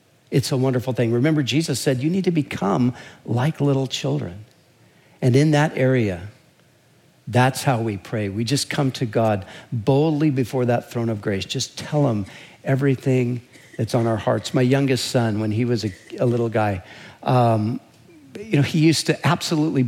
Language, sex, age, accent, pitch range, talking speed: English, male, 50-69, American, 125-150 Hz, 175 wpm